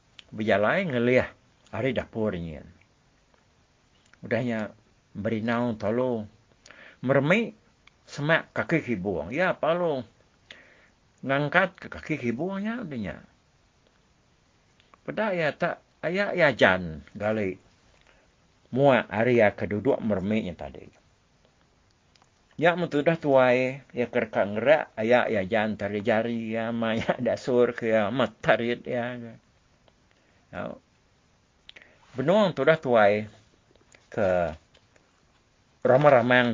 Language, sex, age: English, male, 60-79